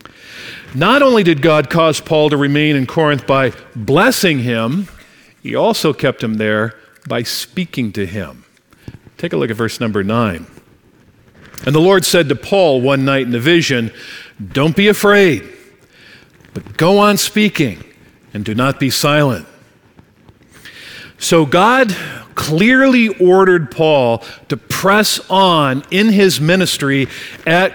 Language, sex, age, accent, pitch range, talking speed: English, male, 50-69, American, 140-185 Hz, 140 wpm